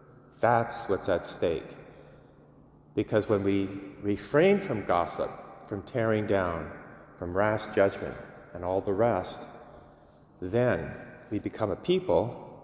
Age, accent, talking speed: 40-59, American, 120 wpm